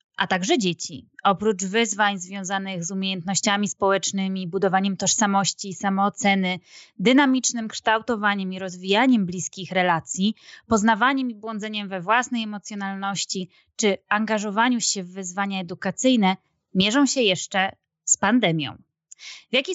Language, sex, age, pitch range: Polish, female, 20-39, 180-215 Hz